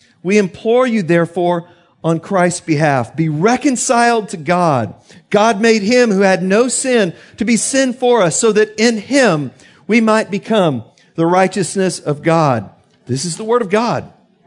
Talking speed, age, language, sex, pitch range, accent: 165 wpm, 50-69, English, male, 150-200 Hz, American